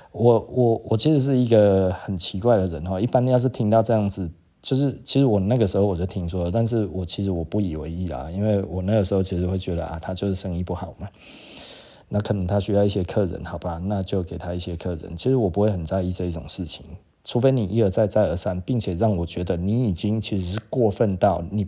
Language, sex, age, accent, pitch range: Chinese, male, 20-39, native, 90-110 Hz